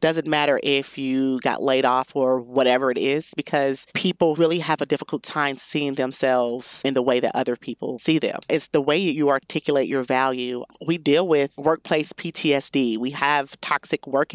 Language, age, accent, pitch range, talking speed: English, 30-49, American, 135-160 Hz, 185 wpm